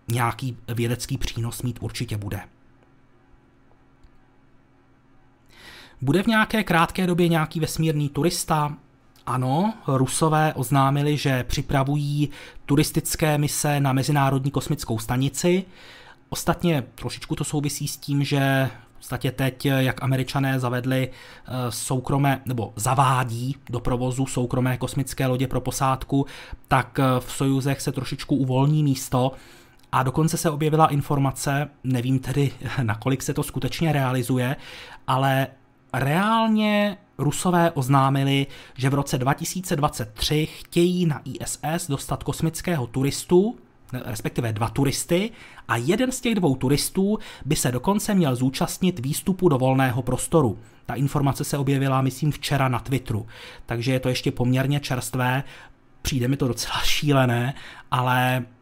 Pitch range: 125-150 Hz